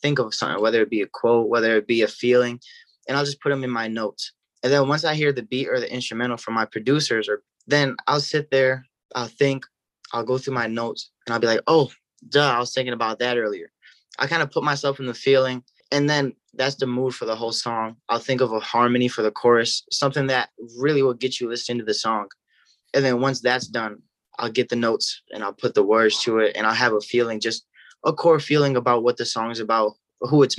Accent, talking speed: American, 245 wpm